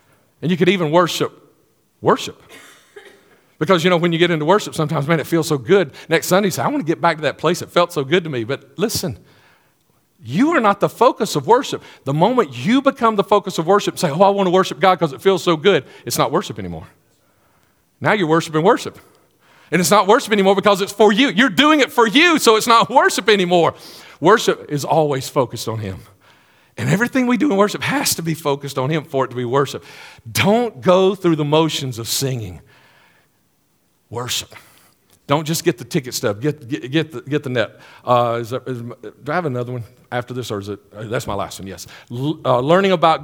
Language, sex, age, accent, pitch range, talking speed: English, male, 40-59, American, 125-185 Hz, 225 wpm